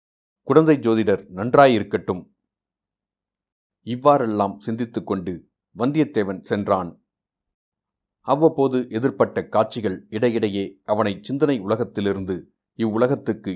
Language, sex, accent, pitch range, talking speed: Tamil, male, native, 100-135 Hz, 75 wpm